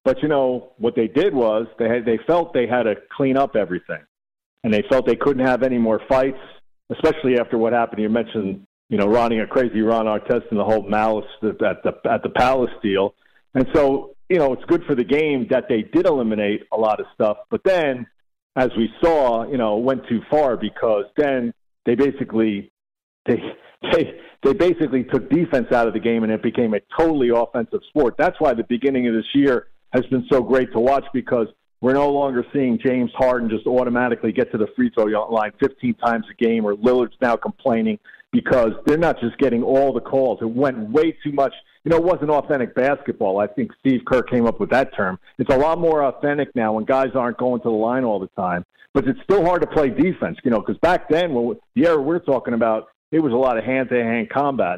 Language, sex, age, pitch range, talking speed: English, male, 50-69, 115-140 Hz, 220 wpm